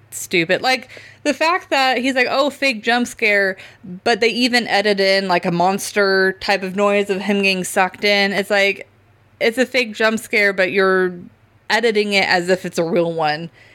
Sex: female